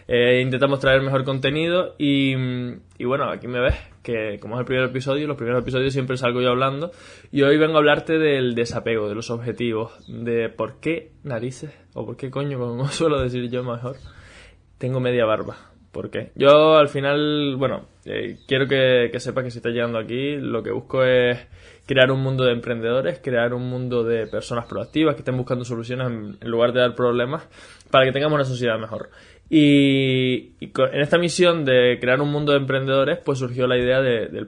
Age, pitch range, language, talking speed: 20-39, 120-140 Hz, Spanish, 200 wpm